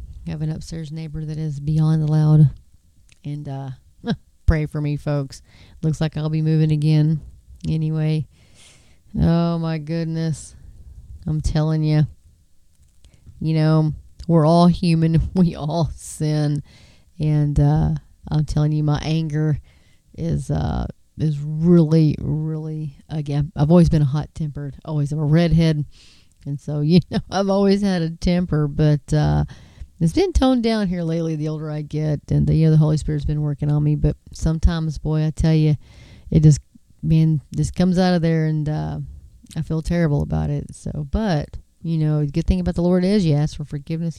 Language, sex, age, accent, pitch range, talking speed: English, female, 30-49, American, 145-160 Hz, 170 wpm